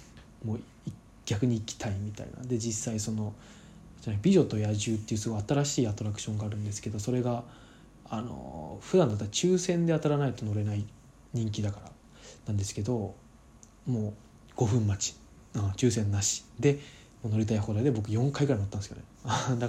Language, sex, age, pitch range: Japanese, male, 20-39, 105-125 Hz